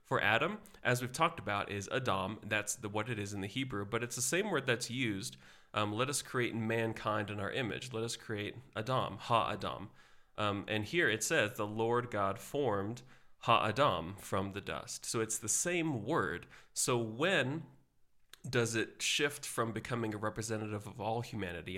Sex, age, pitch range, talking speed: male, 30-49, 105-125 Hz, 185 wpm